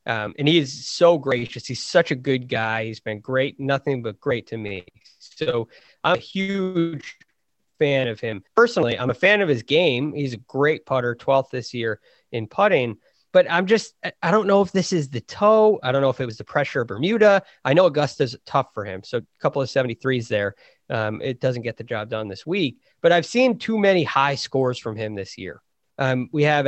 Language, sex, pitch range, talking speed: English, male, 120-155 Hz, 220 wpm